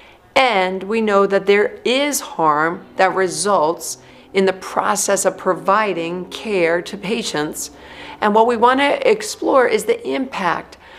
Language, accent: English, American